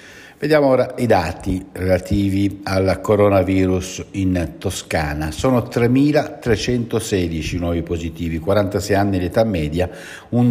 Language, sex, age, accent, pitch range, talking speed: Italian, male, 60-79, native, 90-115 Hz, 110 wpm